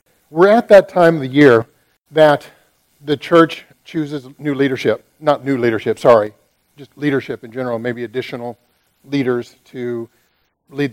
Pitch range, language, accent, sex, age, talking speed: 120-150 Hz, English, American, male, 50-69, 145 wpm